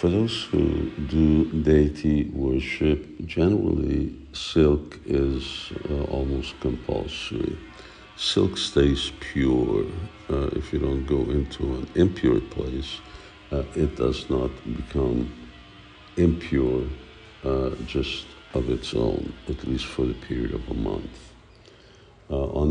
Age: 60-79